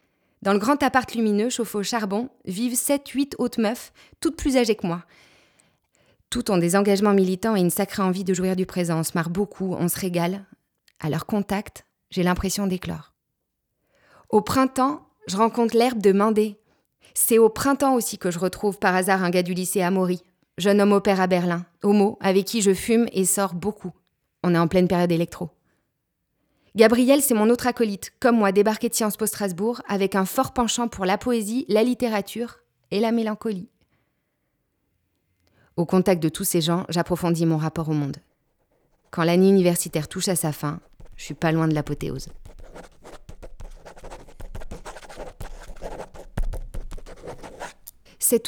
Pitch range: 180-230 Hz